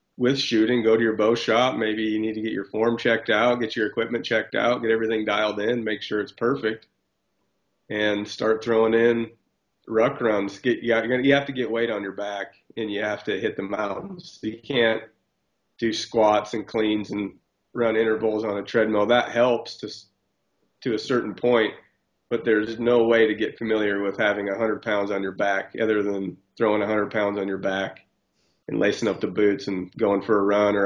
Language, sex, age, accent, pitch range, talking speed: English, male, 30-49, American, 105-115 Hz, 205 wpm